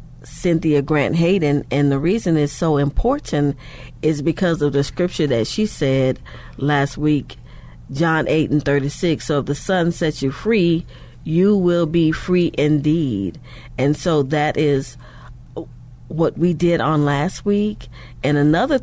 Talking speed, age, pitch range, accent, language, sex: 150 wpm, 40-59, 140-165 Hz, American, English, female